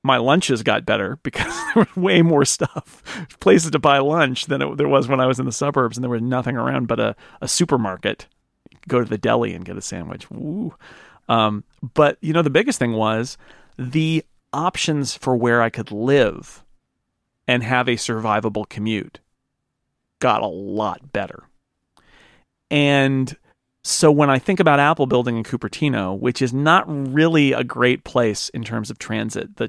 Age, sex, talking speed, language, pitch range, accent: 40-59, male, 175 wpm, English, 120-150 Hz, American